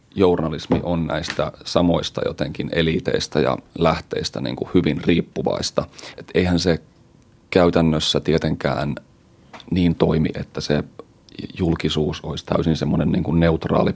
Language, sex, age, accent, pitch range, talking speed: Finnish, male, 30-49, native, 80-85 Hz, 115 wpm